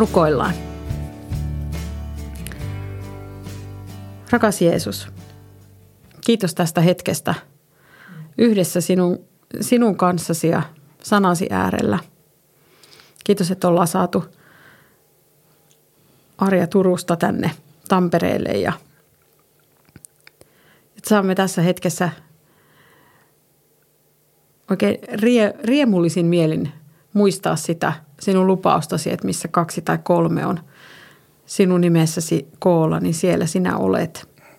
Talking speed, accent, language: 80 wpm, native, Finnish